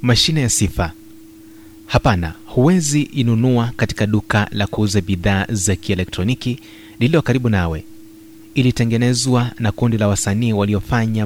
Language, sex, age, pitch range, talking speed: Swahili, male, 30-49, 105-125 Hz, 125 wpm